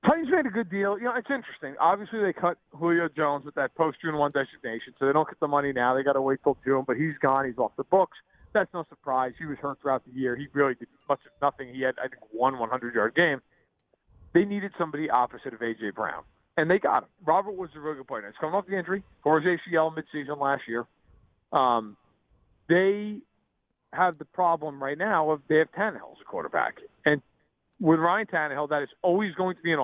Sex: male